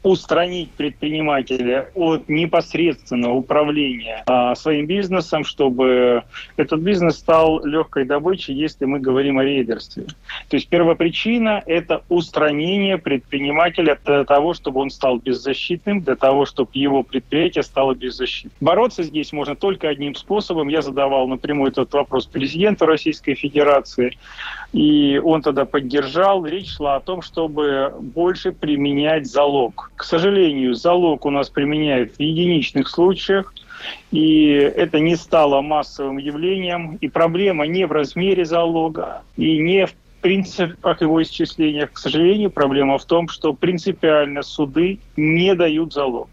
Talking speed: 130 wpm